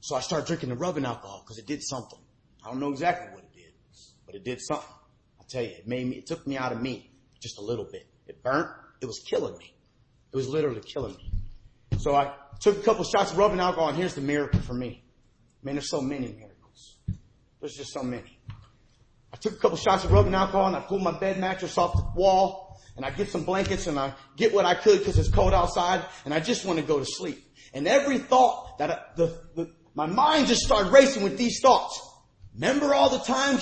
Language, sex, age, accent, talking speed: English, male, 30-49, American, 235 wpm